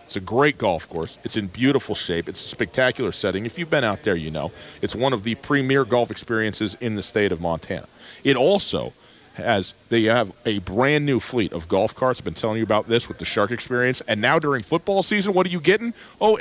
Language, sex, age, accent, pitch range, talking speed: English, male, 40-59, American, 100-130 Hz, 235 wpm